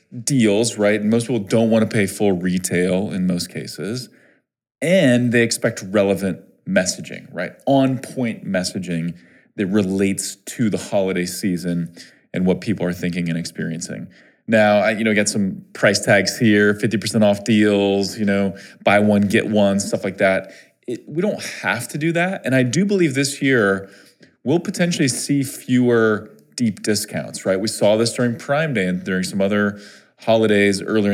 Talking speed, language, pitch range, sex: 170 wpm, English, 100-130 Hz, male